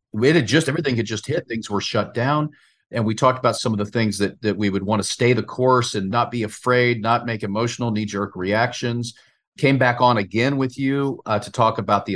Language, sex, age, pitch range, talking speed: English, male, 40-59, 110-140 Hz, 235 wpm